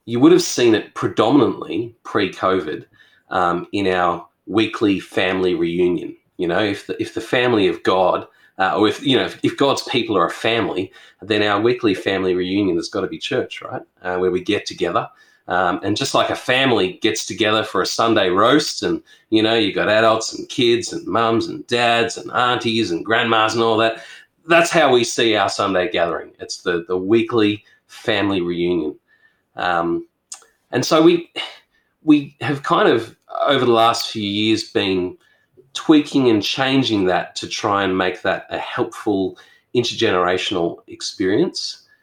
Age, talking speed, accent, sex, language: 30-49, 170 wpm, Australian, male, English